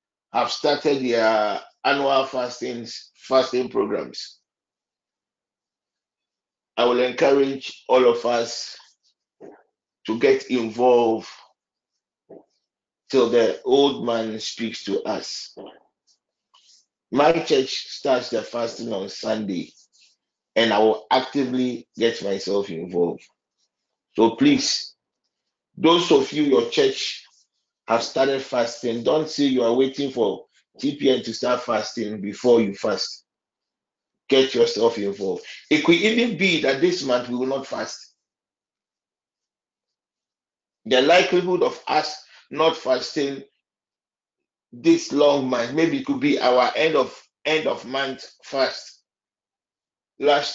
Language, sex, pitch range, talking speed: English, male, 120-160 Hz, 115 wpm